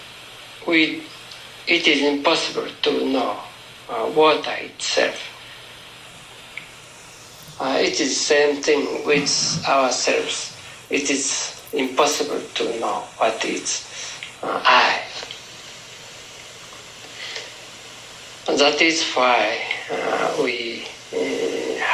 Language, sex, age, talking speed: English, male, 50-69, 95 wpm